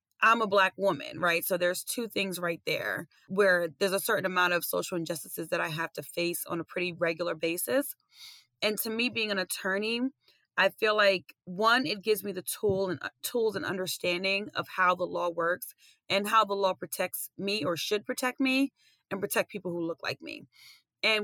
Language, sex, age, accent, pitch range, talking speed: English, female, 30-49, American, 175-205 Hz, 205 wpm